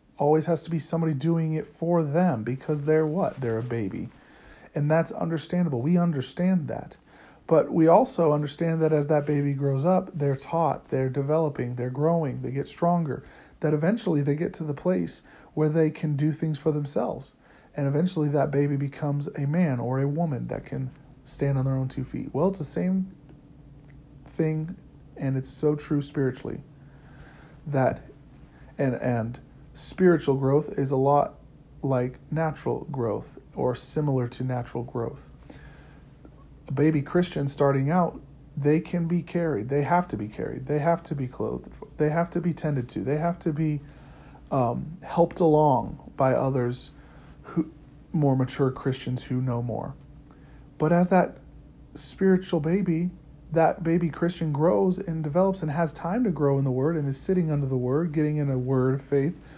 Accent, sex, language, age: American, male, English, 40-59